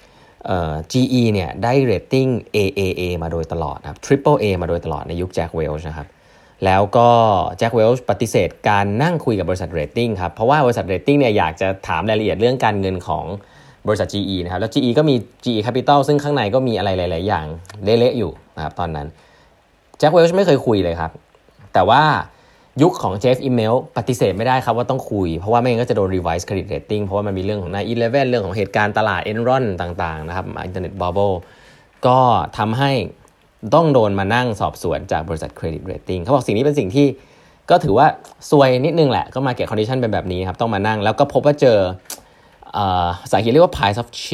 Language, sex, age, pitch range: Thai, male, 20-39, 90-130 Hz